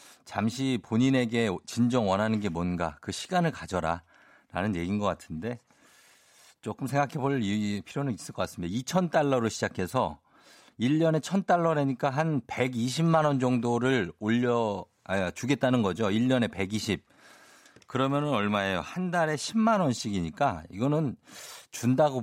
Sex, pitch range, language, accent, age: male, 90-130 Hz, Korean, native, 50-69